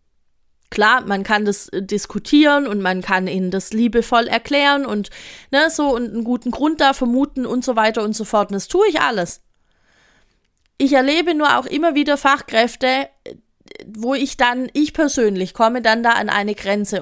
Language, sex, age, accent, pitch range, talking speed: German, female, 30-49, German, 210-285 Hz, 165 wpm